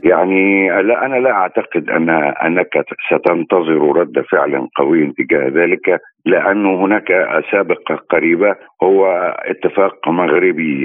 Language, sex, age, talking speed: Arabic, male, 50-69, 110 wpm